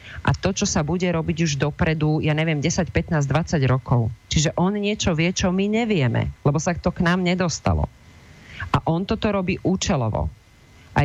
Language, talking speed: Slovak, 180 wpm